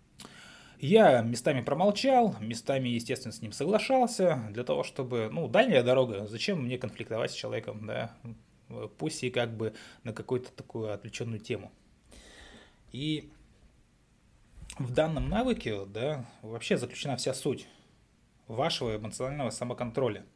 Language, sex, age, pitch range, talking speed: Russian, male, 20-39, 110-140 Hz, 120 wpm